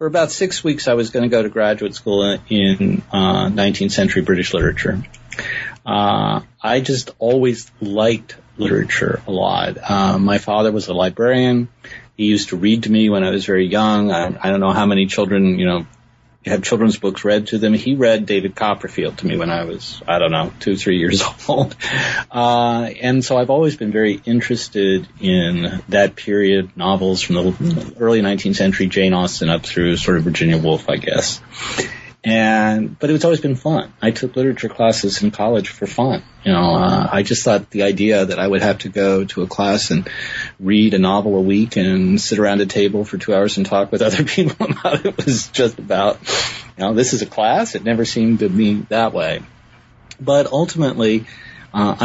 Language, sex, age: English, male, 30-49